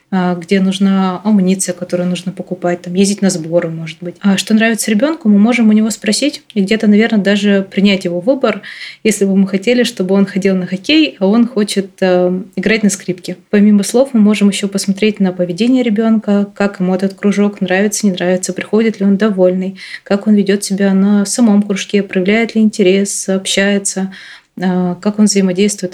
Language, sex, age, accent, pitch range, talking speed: Russian, female, 20-39, native, 185-215 Hz, 185 wpm